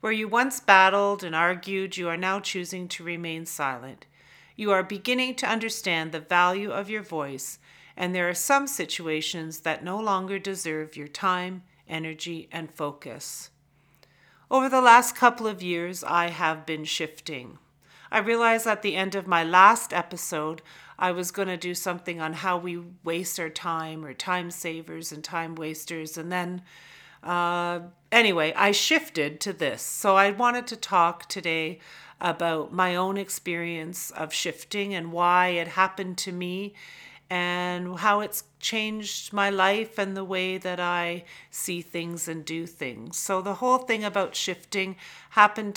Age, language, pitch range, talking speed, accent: 40-59, English, 165-200 Hz, 160 wpm, American